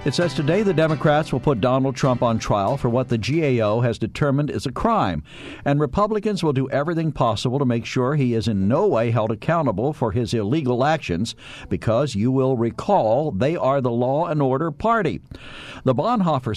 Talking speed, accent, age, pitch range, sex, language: 190 wpm, American, 60-79, 115-155 Hz, male, English